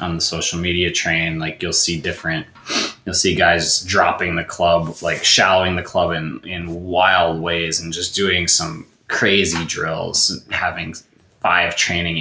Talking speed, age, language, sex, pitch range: 155 wpm, 20-39, English, male, 90-110 Hz